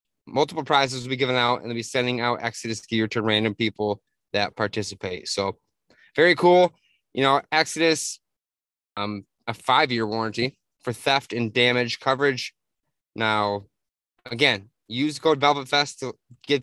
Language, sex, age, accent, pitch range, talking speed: English, male, 20-39, American, 115-150 Hz, 150 wpm